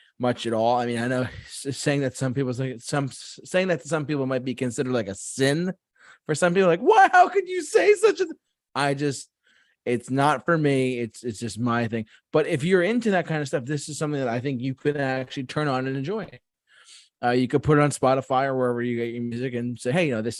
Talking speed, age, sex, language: 250 wpm, 20-39, male, English